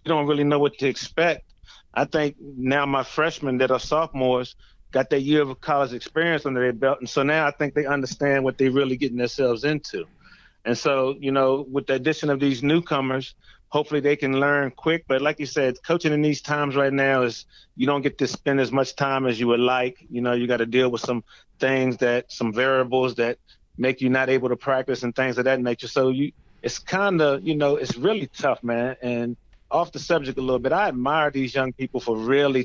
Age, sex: 30-49, male